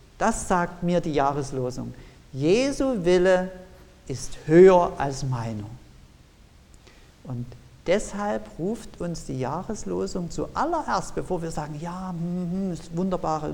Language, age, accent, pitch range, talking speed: German, 50-69, German, 125-180 Hz, 110 wpm